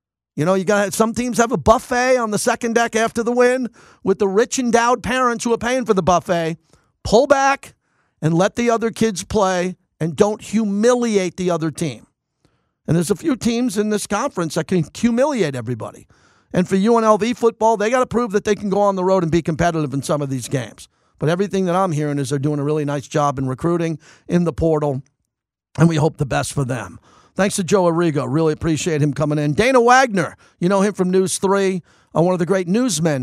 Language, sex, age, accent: English, male, 50-69, American